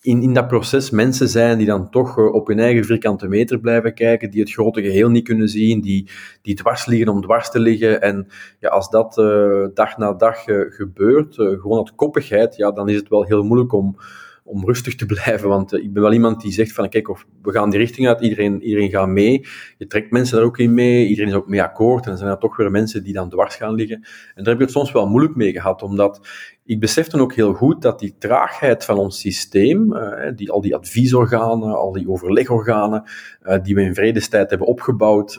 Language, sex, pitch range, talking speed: Dutch, male, 100-120 Hz, 235 wpm